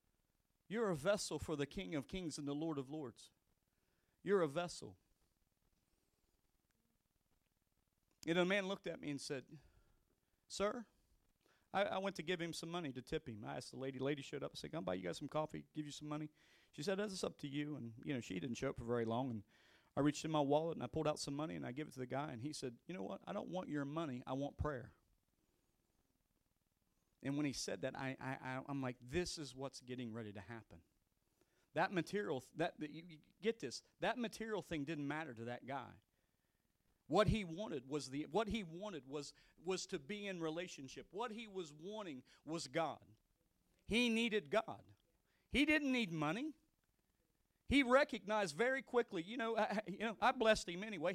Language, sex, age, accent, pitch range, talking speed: English, male, 40-59, American, 130-200 Hz, 210 wpm